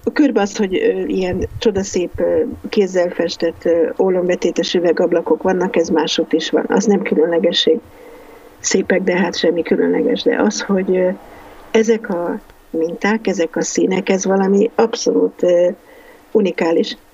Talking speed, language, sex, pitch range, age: 125 wpm, Hungarian, female, 185-235 Hz, 50-69